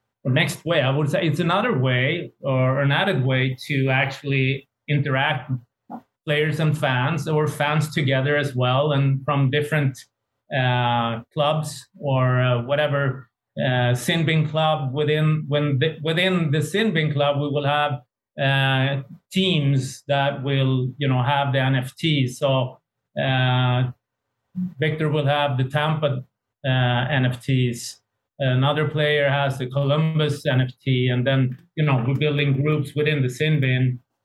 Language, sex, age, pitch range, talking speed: English, male, 30-49, 130-150 Hz, 135 wpm